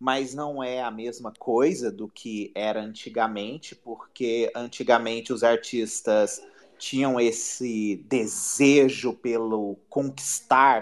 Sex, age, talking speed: male, 30-49, 105 wpm